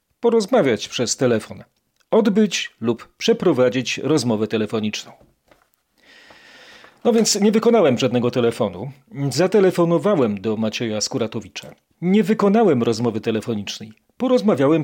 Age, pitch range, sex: 40-59, 120-180 Hz, male